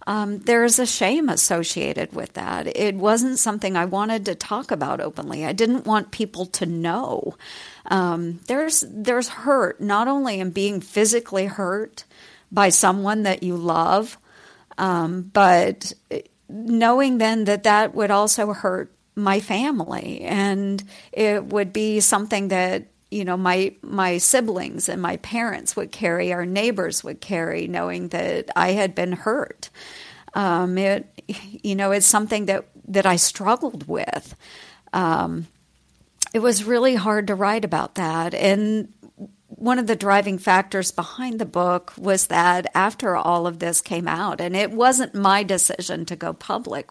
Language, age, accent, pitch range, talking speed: English, 50-69, American, 185-220 Hz, 150 wpm